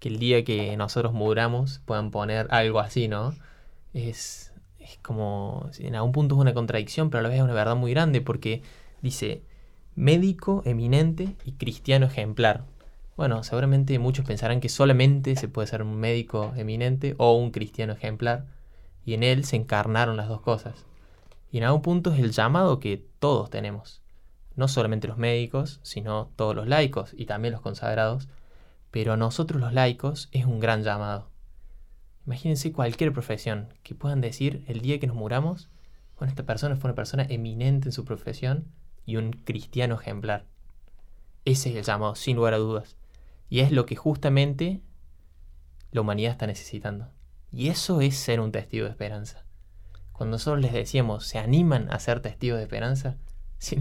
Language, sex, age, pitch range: Spanish, male, 20-39, 105-135 Hz